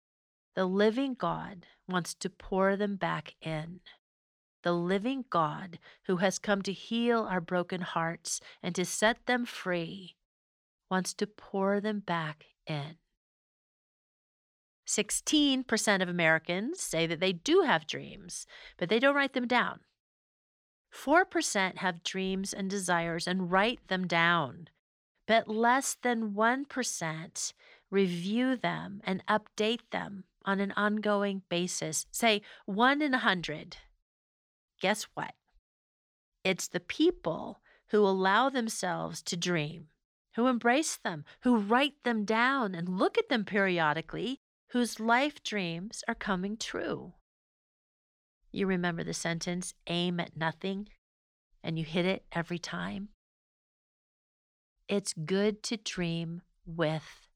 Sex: female